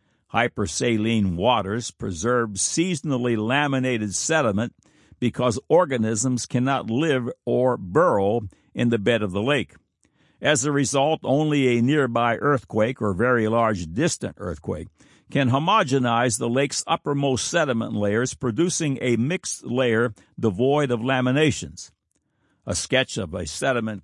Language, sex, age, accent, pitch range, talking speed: English, male, 60-79, American, 105-140 Hz, 120 wpm